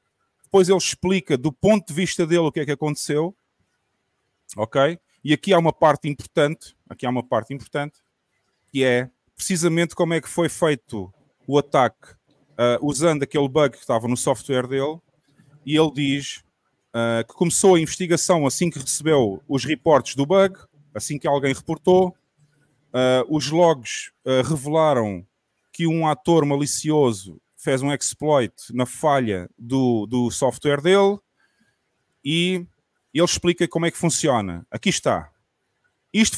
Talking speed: 145 wpm